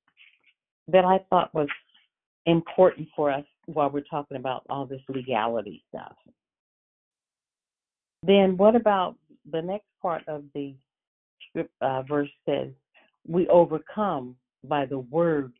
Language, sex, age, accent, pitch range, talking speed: English, female, 50-69, American, 140-190 Hz, 120 wpm